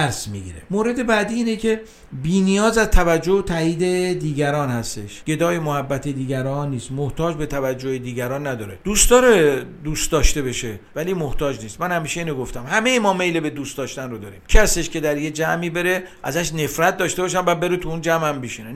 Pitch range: 140-185 Hz